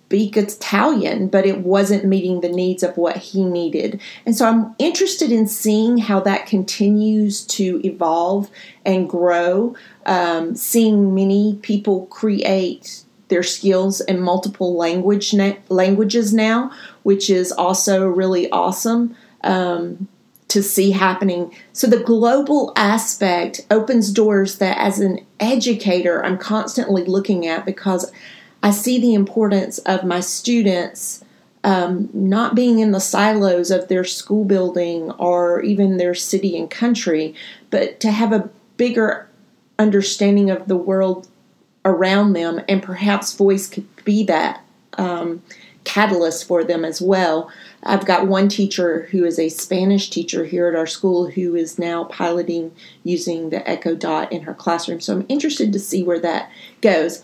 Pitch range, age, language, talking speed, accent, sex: 180-210 Hz, 40-59, English, 145 wpm, American, female